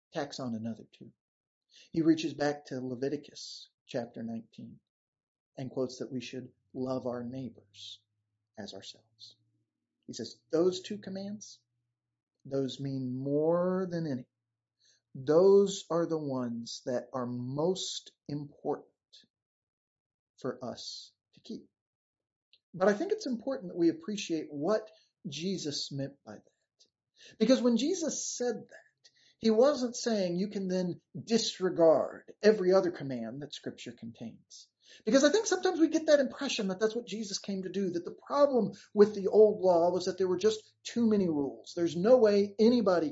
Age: 40-59